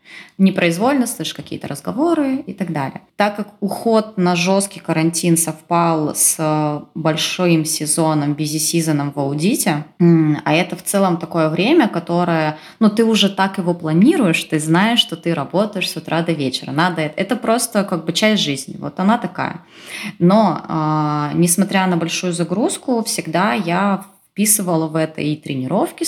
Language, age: Russian, 20-39